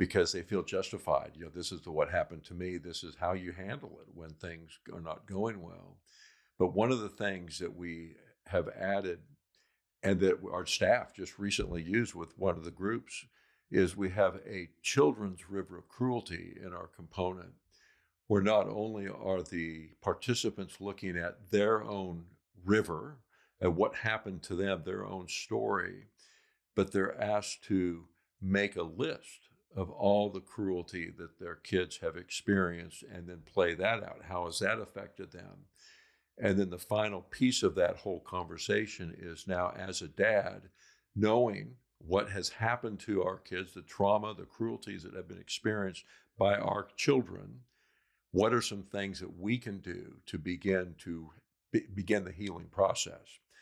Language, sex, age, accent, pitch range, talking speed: English, male, 60-79, American, 85-105 Hz, 165 wpm